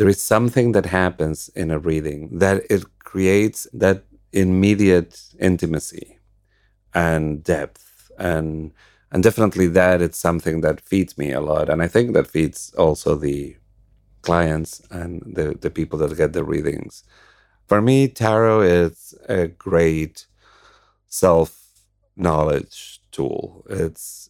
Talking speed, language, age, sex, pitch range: 130 wpm, English, 40-59, male, 80-100 Hz